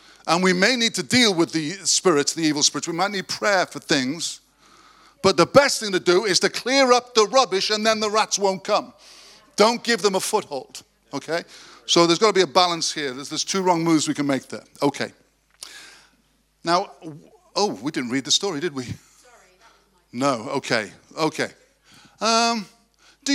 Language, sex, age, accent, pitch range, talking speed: English, male, 50-69, British, 135-195 Hz, 190 wpm